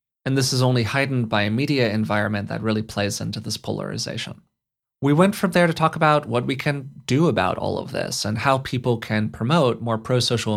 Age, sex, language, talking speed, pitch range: 30-49, male, English, 210 wpm, 110-140 Hz